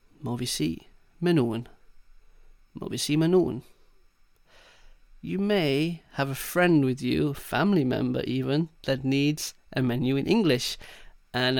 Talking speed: 125 wpm